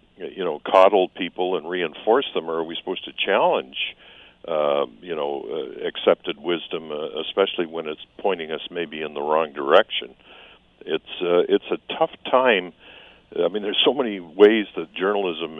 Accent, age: American, 60-79